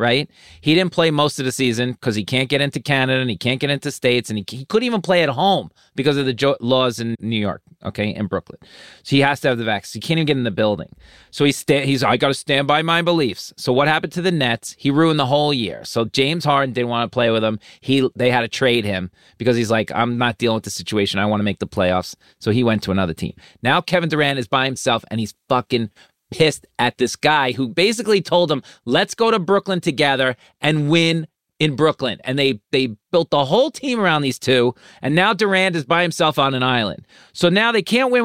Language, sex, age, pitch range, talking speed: English, male, 30-49, 120-165 Hz, 255 wpm